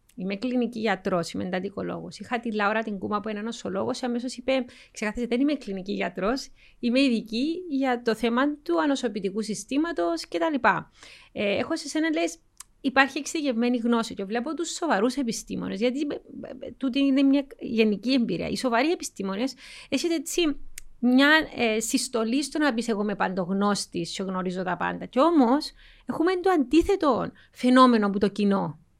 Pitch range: 220-280 Hz